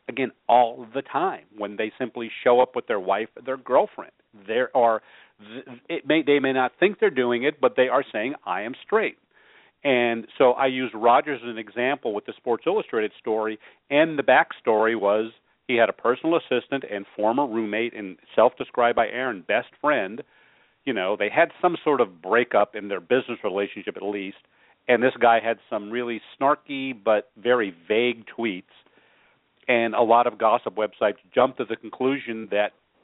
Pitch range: 105-130 Hz